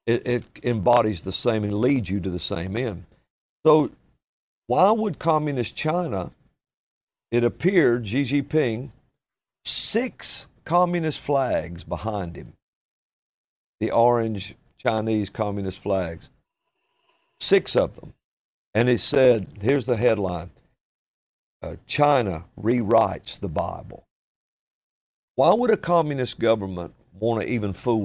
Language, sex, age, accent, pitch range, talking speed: English, male, 50-69, American, 100-140 Hz, 115 wpm